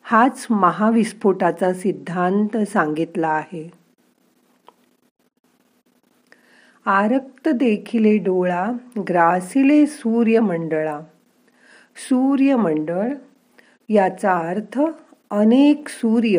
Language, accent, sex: Marathi, native, female